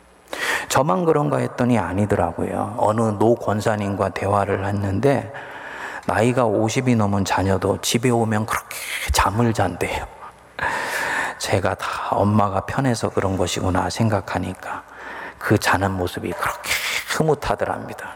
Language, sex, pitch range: Korean, male, 95-115 Hz